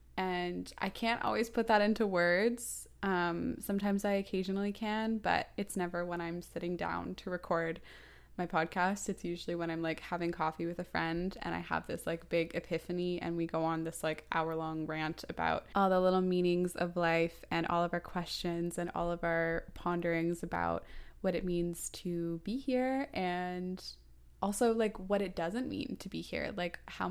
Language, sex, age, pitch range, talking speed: English, female, 20-39, 170-205 Hz, 190 wpm